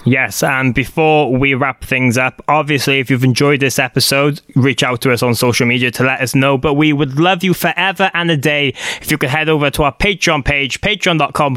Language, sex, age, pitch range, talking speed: English, male, 20-39, 140-165 Hz, 225 wpm